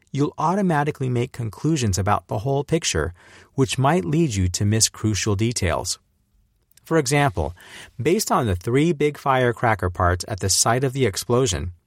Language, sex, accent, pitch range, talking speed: English, male, American, 95-145 Hz, 155 wpm